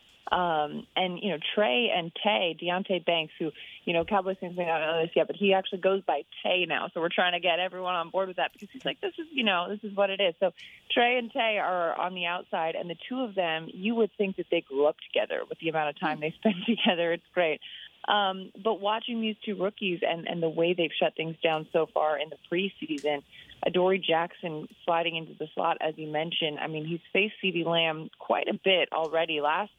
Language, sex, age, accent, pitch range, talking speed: English, female, 30-49, American, 160-195 Hz, 240 wpm